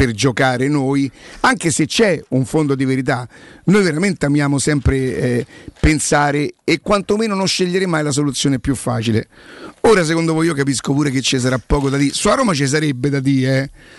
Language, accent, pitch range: Italian, native, 135-175 Hz